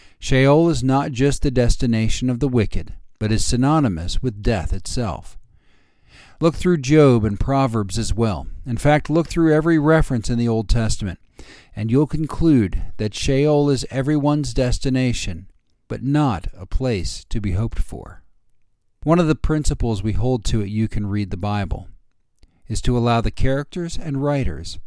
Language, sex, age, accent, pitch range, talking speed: English, male, 50-69, American, 100-140 Hz, 165 wpm